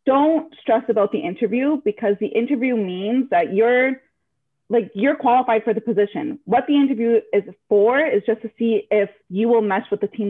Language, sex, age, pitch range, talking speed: English, female, 20-39, 205-250 Hz, 190 wpm